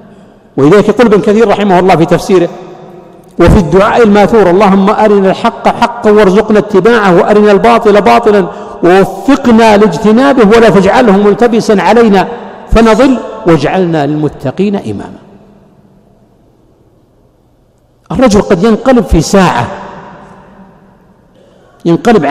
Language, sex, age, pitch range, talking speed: Arabic, male, 60-79, 180-220 Hz, 95 wpm